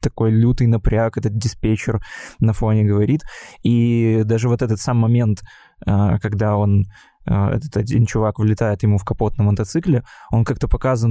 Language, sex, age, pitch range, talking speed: Russian, male, 20-39, 105-120 Hz, 150 wpm